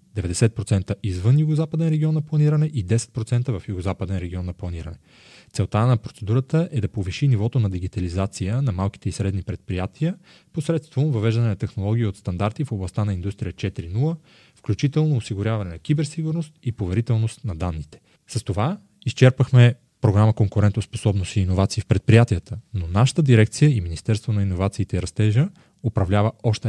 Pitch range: 100-135 Hz